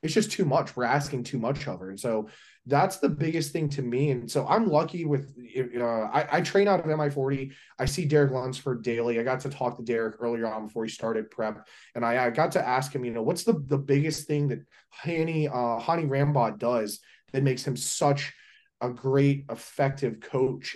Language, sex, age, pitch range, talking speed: English, male, 20-39, 125-160 Hz, 220 wpm